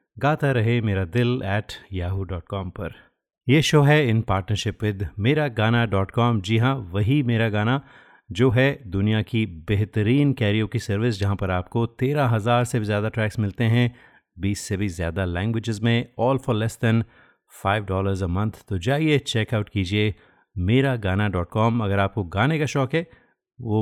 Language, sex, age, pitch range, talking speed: Hindi, male, 30-49, 100-125 Hz, 160 wpm